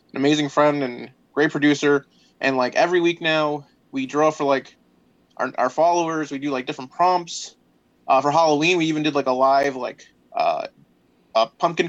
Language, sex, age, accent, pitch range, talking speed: English, male, 20-39, American, 135-160 Hz, 175 wpm